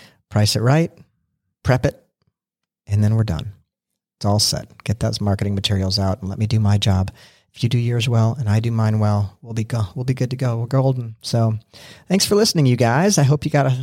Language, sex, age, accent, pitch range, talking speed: English, male, 40-59, American, 115-140 Hz, 235 wpm